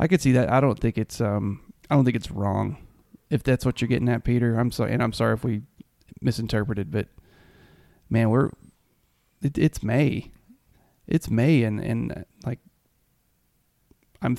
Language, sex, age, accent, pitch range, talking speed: English, male, 20-39, American, 105-125 Hz, 170 wpm